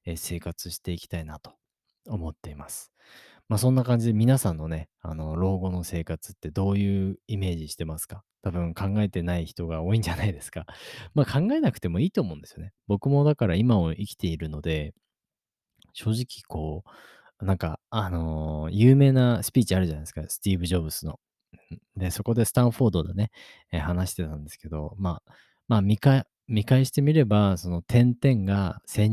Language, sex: Japanese, male